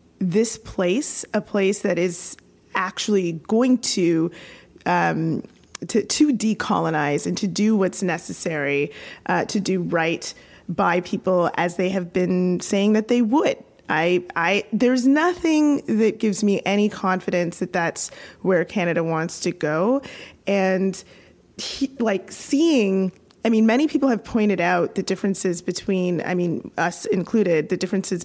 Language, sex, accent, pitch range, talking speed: English, female, American, 175-210 Hz, 140 wpm